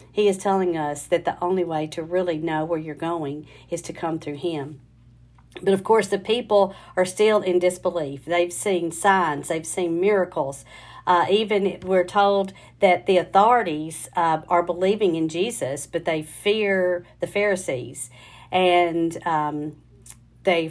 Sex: female